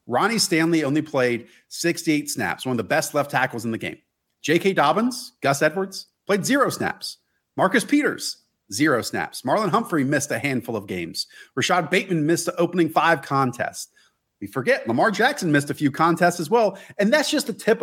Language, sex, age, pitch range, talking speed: English, male, 40-59, 120-170 Hz, 185 wpm